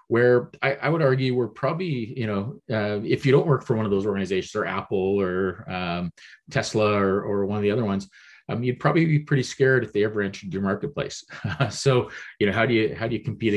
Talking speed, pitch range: 235 wpm, 95-130 Hz